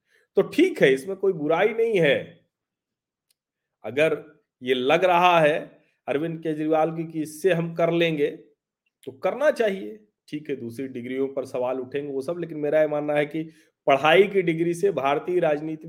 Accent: native